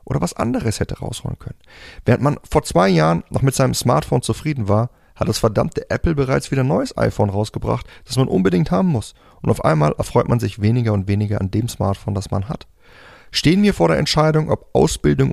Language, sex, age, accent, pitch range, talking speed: German, male, 30-49, German, 105-145 Hz, 210 wpm